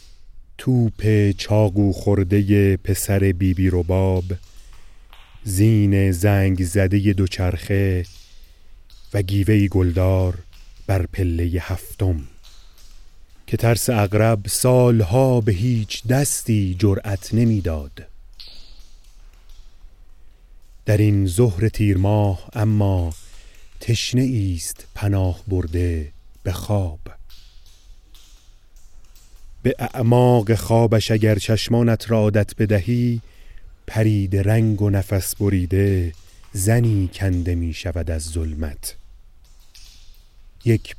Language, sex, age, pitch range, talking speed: Persian, male, 30-49, 85-105 Hz, 80 wpm